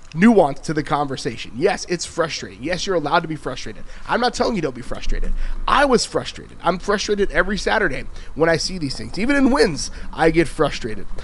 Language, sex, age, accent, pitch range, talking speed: English, male, 30-49, American, 150-195 Hz, 205 wpm